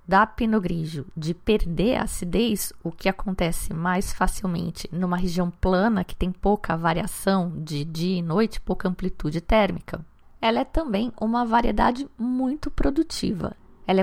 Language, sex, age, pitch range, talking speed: Portuguese, female, 20-39, 185-270 Hz, 145 wpm